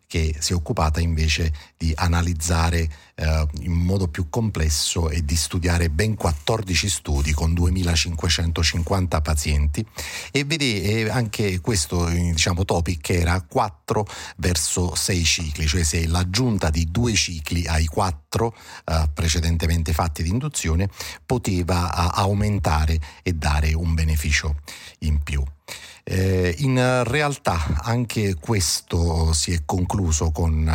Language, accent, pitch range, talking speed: Italian, native, 80-95 Hz, 120 wpm